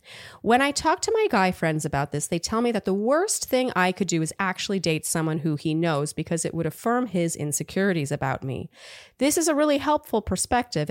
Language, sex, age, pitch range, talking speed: English, female, 30-49, 155-210 Hz, 220 wpm